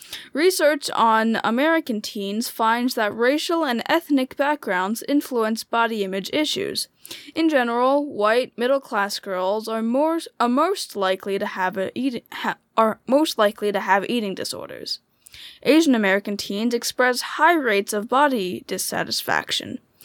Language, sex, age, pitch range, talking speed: English, female, 10-29, 210-295 Hz, 105 wpm